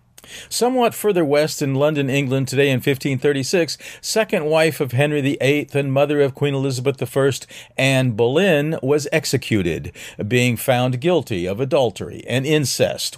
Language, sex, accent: English, male, American